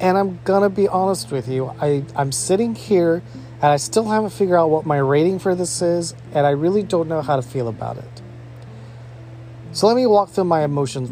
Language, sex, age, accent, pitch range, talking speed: English, male, 30-49, American, 120-150 Hz, 220 wpm